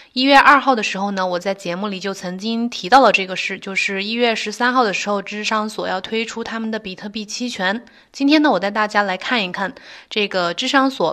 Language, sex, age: Chinese, female, 20-39